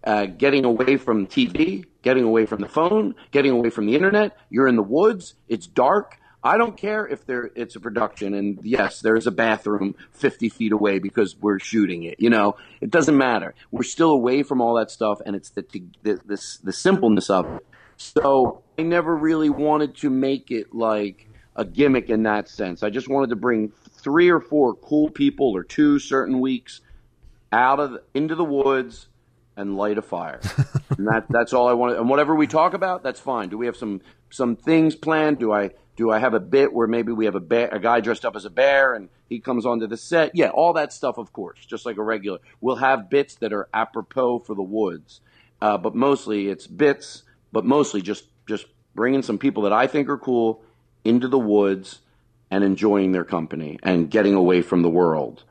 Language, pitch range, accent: English, 105-140 Hz, American